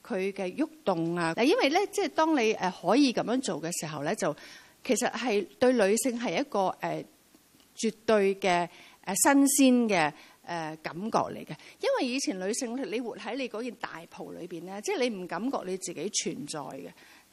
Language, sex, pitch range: Chinese, female, 185-275 Hz